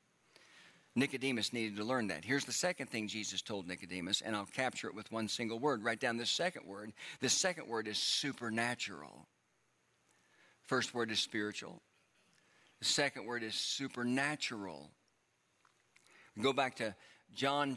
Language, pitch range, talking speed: English, 105-140 Hz, 145 wpm